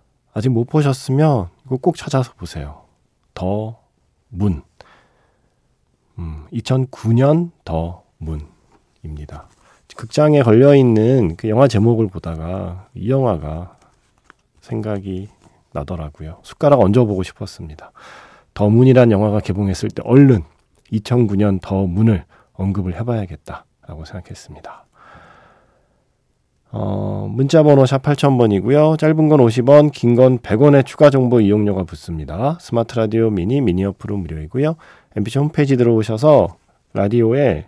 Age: 40-59